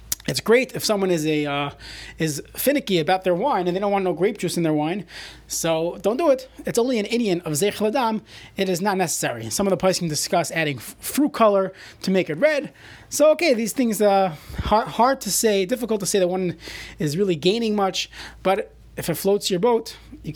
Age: 30-49